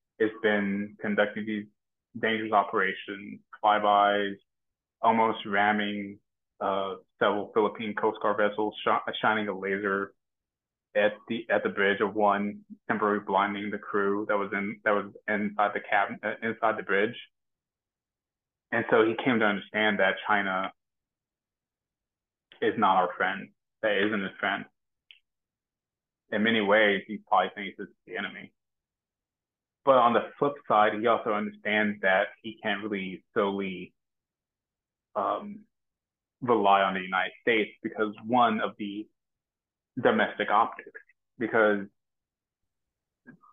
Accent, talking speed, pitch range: American, 130 wpm, 100-110 Hz